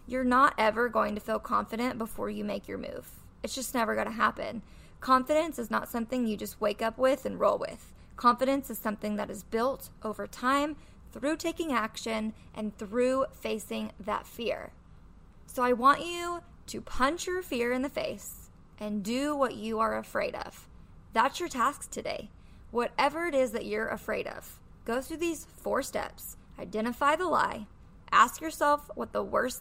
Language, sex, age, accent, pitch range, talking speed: English, female, 20-39, American, 220-285 Hz, 175 wpm